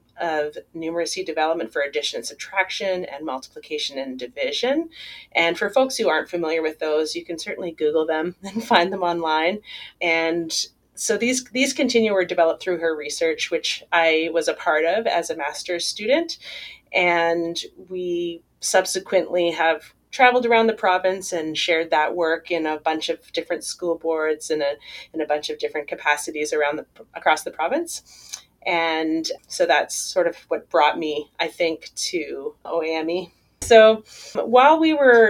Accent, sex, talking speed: American, female, 165 wpm